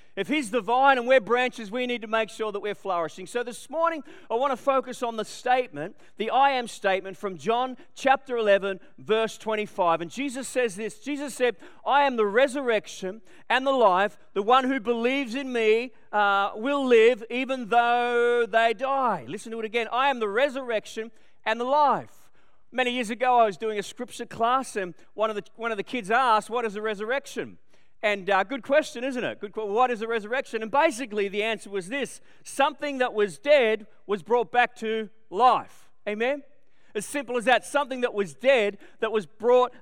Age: 40-59